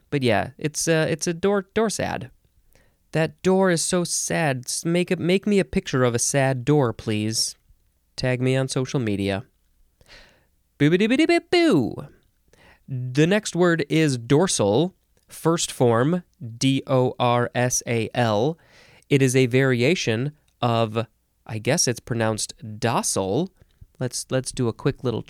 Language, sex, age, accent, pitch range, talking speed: English, male, 20-39, American, 120-165 Hz, 155 wpm